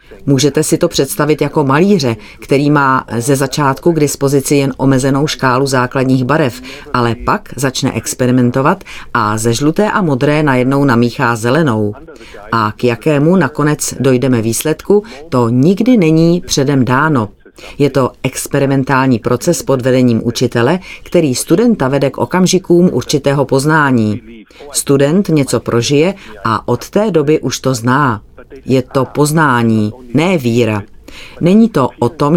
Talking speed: 135 wpm